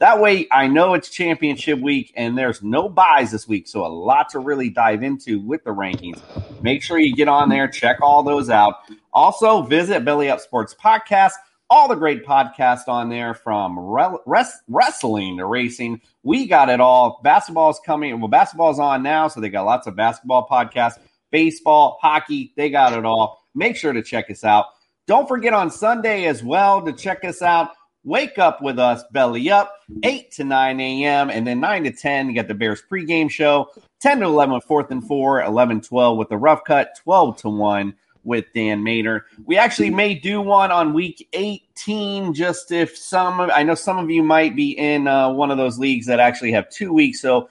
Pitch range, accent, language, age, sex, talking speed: 120-170 Hz, American, English, 30-49, male, 205 wpm